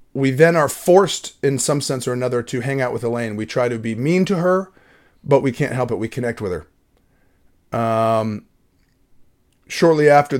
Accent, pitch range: American, 110-130 Hz